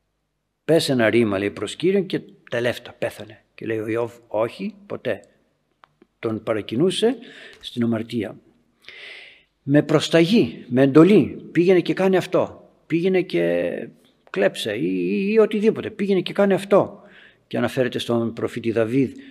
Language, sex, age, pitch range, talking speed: Greek, male, 60-79, 115-185 Hz, 130 wpm